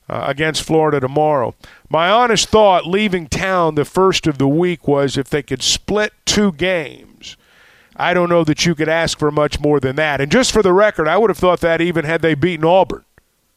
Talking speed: 210 wpm